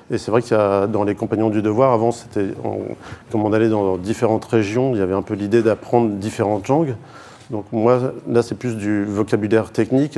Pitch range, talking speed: 100-120 Hz, 205 wpm